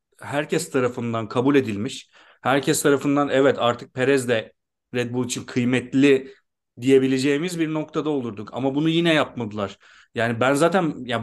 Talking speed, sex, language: 140 wpm, male, Turkish